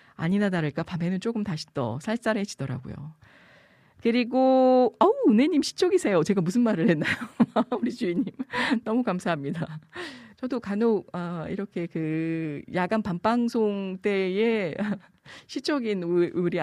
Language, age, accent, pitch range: Korean, 40-59, native, 165-230 Hz